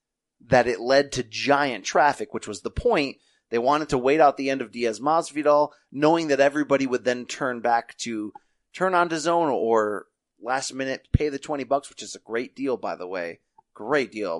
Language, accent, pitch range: English, American, 115-165 Hz